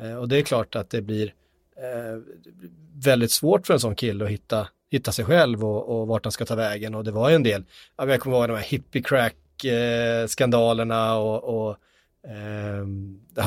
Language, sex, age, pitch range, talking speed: Swedish, male, 30-49, 110-135 Hz, 185 wpm